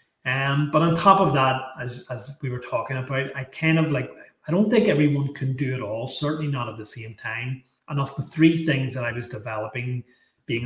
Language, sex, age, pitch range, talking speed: English, male, 30-49, 120-150 Hz, 225 wpm